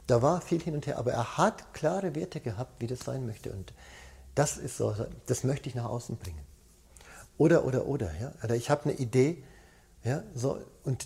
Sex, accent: male, German